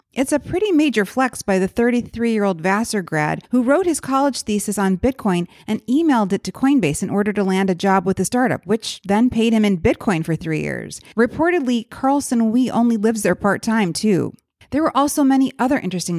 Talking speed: 200 wpm